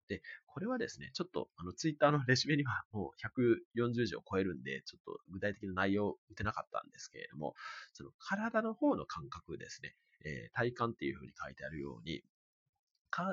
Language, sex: Japanese, male